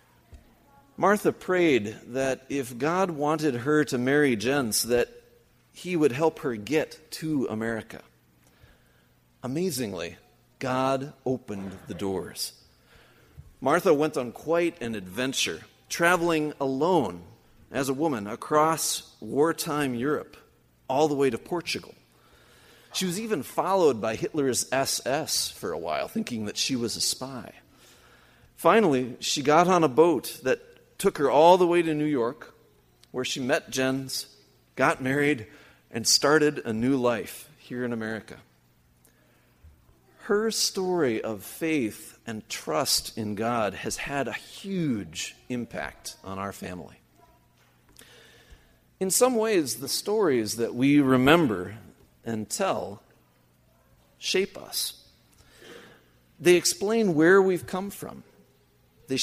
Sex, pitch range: male, 105-160 Hz